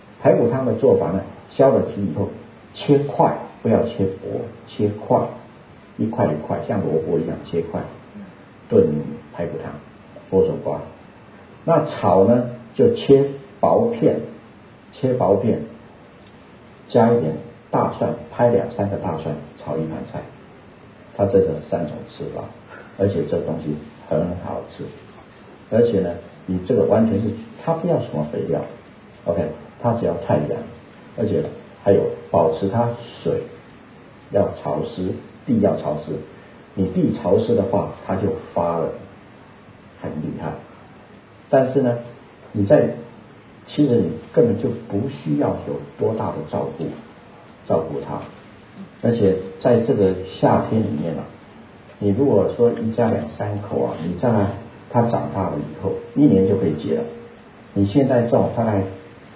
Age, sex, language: 50-69, male, English